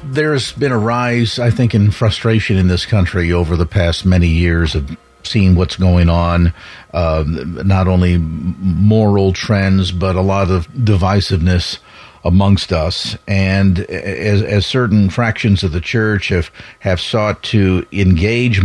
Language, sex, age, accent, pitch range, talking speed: English, male, 50-69, American, 95-115 Hz, 150 wpm